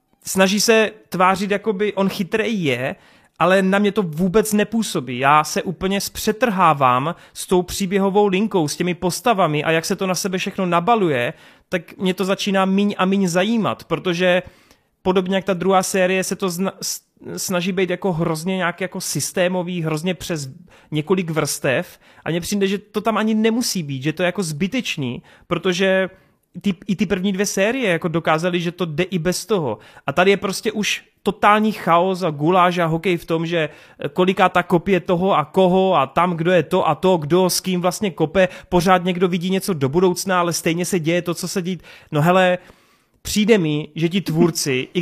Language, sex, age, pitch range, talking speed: Czech, male, 30-49, 170-195 Hz, 190 wpm